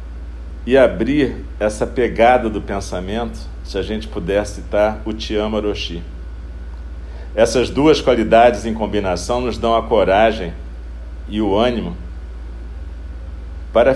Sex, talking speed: male, 115 wpm